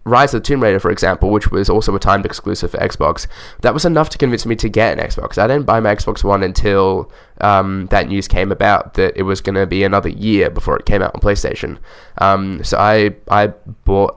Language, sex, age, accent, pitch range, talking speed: English, male, 10-29, Australian, 95-105 Hz, 235 wpm